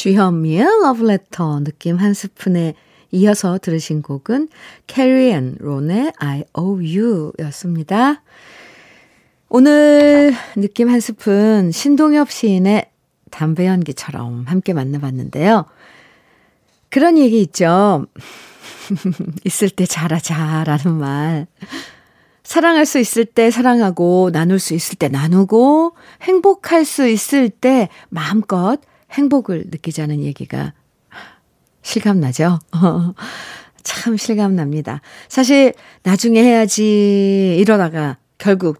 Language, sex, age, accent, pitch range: Korean, female, 50-69, native, 165-230 Hz